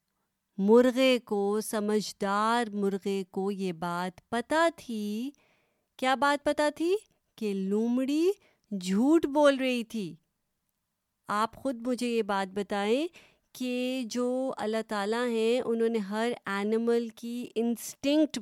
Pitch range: 195-250 Hz